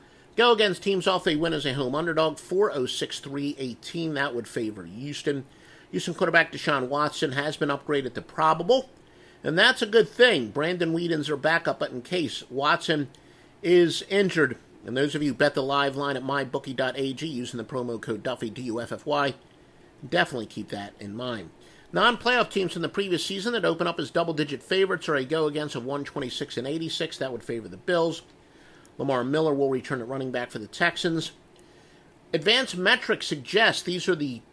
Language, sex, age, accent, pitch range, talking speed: English, male, 50-69, American, 130-175 Hz, 185 wpm